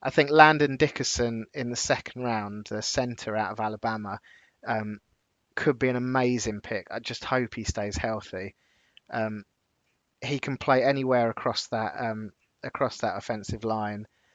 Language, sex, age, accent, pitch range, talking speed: English, male, 20-39, British, 115-140 Hz, 155 wpm